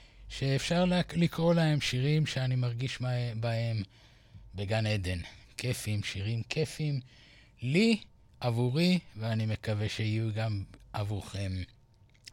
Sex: male